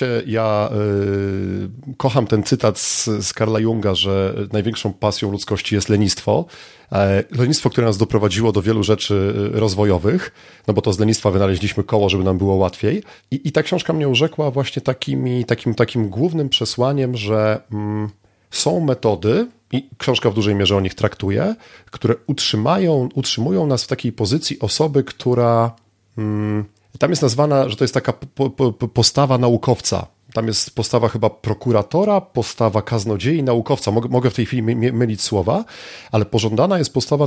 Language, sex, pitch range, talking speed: Polish, male, 105-135 Hz, 155 wpm